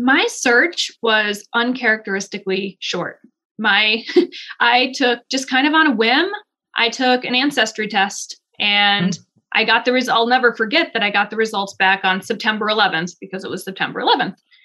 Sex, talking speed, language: female, 170 wpm, English